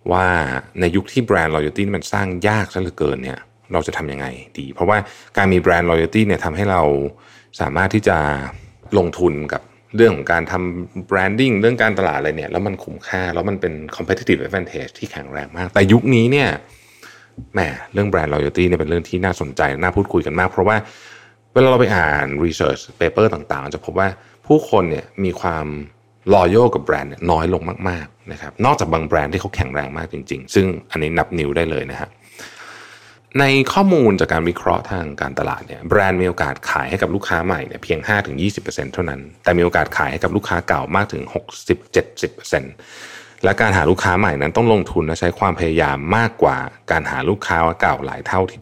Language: Thai